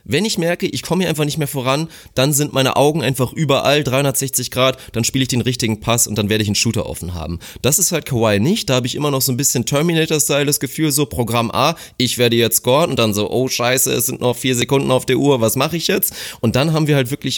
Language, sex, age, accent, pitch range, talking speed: German, male, 30-49, German, 115-145 Hz, 270 wpm